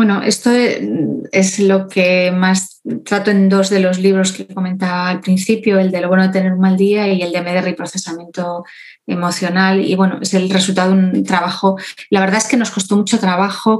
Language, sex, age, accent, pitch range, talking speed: Spanish, female, 20-39, Spanish, 190-225 Hz, 210 wpm